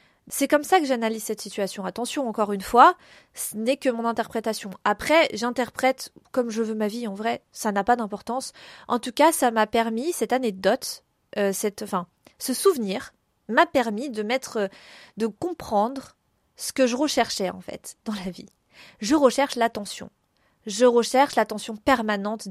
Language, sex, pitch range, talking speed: French, female, 215-265 Hz, 170 wpm